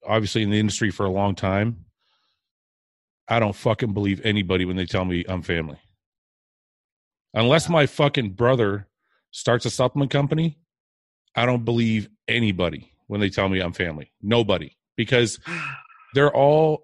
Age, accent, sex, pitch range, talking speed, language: 30-49, American, male, 100-125 Hz, 145 wpm, English